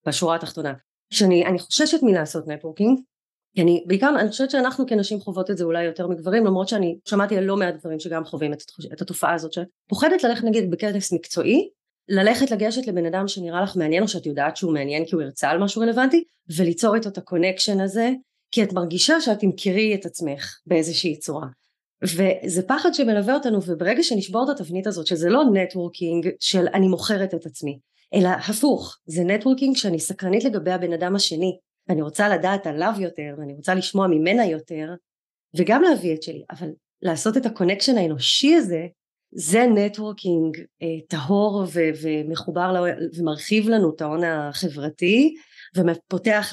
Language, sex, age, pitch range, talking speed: Hebrew, female, 30-49, 165-210 Hz, 150 wpm